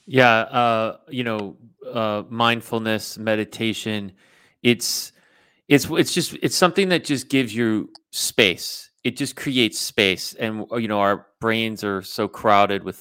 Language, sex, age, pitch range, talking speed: English, male, 30-49, 100-130 Hz, 145 wpm